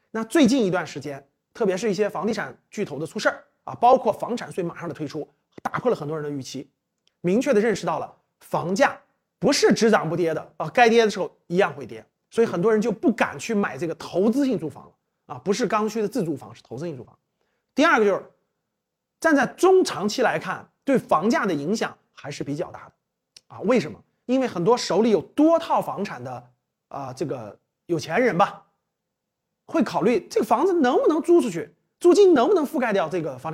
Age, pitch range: 30-49, 170-255 Hz